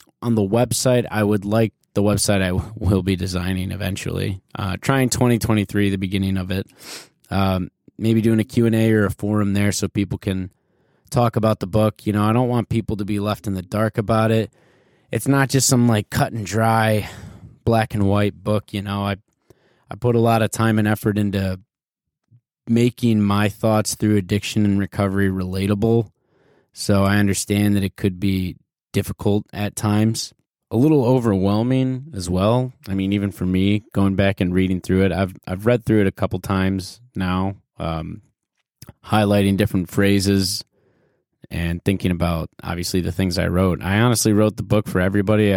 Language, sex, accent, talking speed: English, male, American, 180 wpm